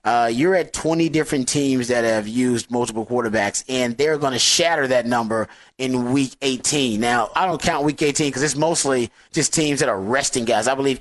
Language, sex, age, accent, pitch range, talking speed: English, male, 30-49, American, 120-145 Hz, 205 wpm